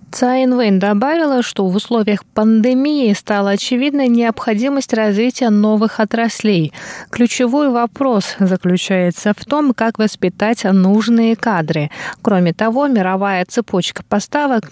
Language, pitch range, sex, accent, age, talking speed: Russian, 185-235 Hz, female, native, 20-39, 105 wpm